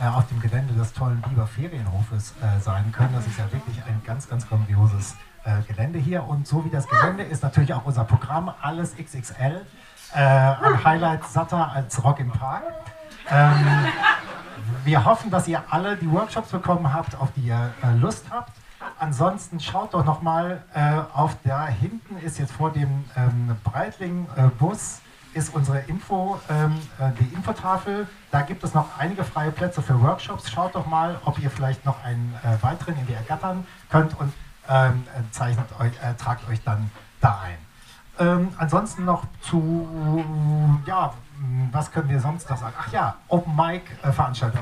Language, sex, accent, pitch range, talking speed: German, male, German, 125-160 Hz, 165 wpm